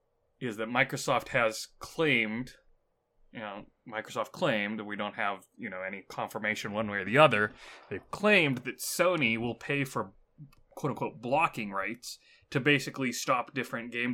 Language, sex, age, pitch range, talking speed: English, male, 20-39, 105-140 Hz, 155 wpm